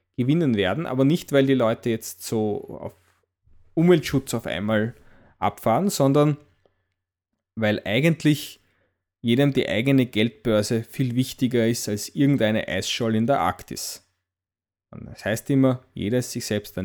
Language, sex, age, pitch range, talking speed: English, male, 20-39, 100-130 Hz, 135 wpm